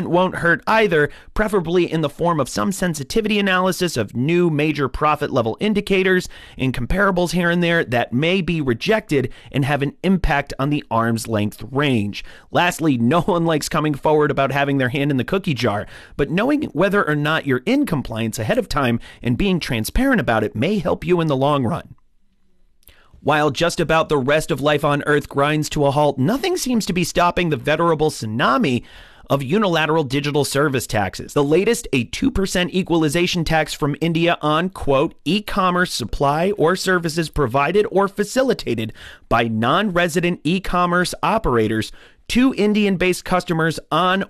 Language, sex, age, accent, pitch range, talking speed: English, male, 30-49, American, 130-180 Hz, 170 wpm